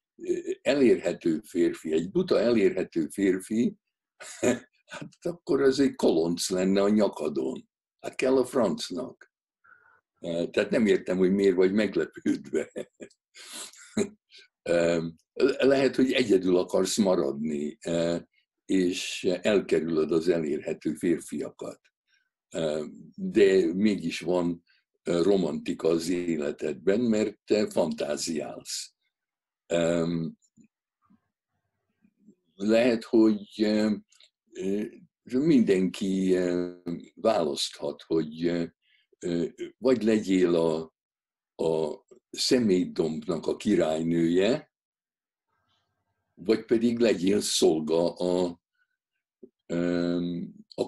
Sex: male